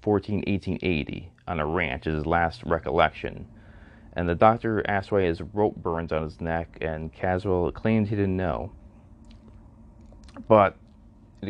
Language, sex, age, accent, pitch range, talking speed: English, male, 30-49, American, 85-105 Hz, 145 wpm